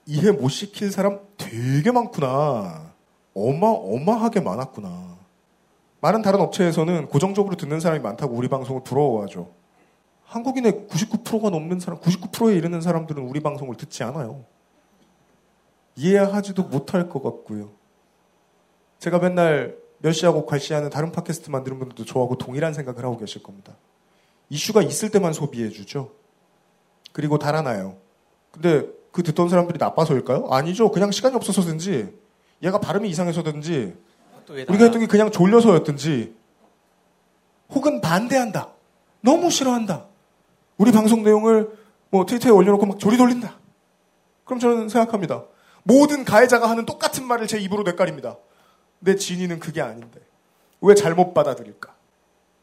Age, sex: 40-59, male